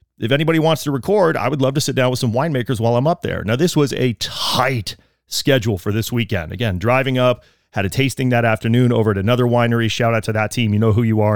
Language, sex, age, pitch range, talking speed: English, male, 30-49, 115-140 Hz, 260 wpm